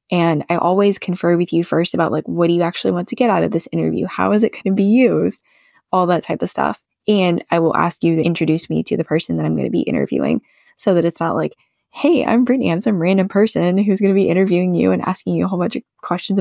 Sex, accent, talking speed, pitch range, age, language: female, American, 275 wpm, 165-200 Hz, 10-29, English